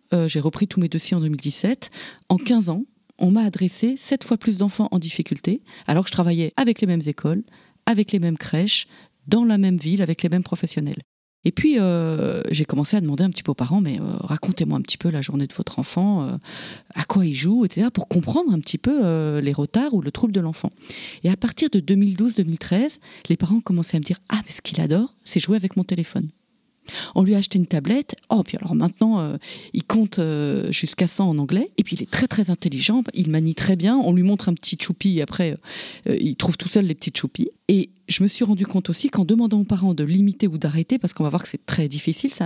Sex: female